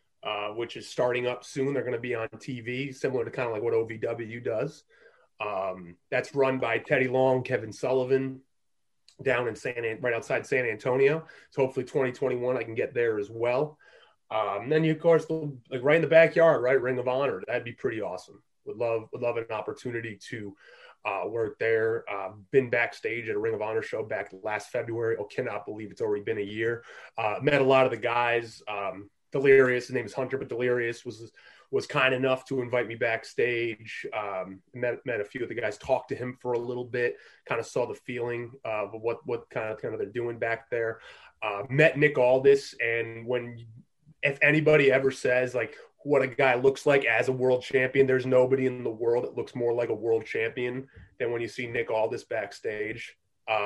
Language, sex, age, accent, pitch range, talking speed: English, male, 30-49, American, 120-160 Hz, 210 wpm